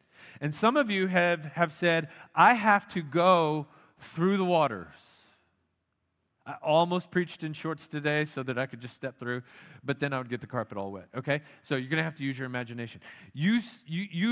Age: 40-59